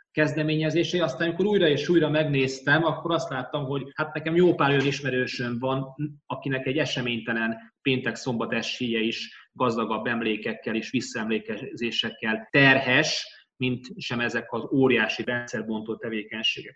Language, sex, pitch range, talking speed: Hungarian, male, 115-140 Hz, 125 wpm